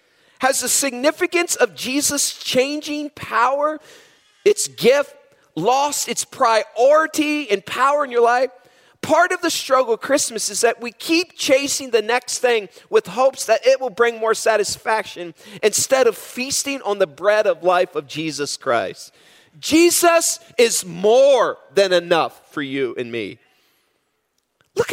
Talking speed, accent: 145 wpm, American